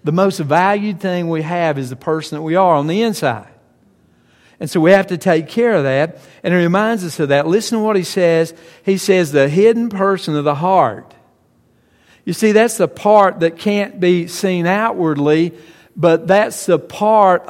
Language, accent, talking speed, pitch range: English, American, 195 wpm, 155-195 Hz